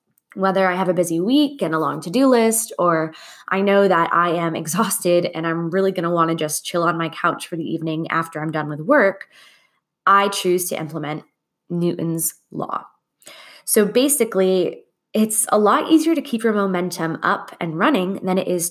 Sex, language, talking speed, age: female, English, 190 wpm, 20-39